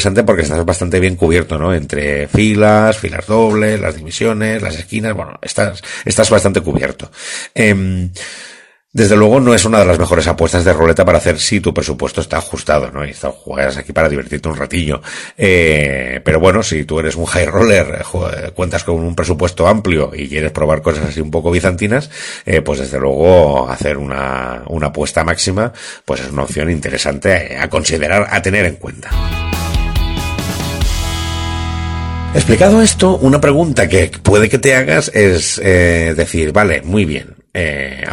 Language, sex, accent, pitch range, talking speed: Spanish, male, Spanish, 80-100 Hz, 170 wpm